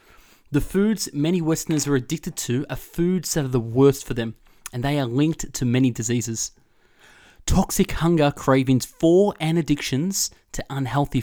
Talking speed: 160 wpm